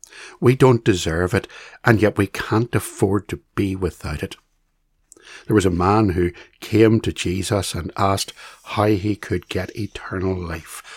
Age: 60-79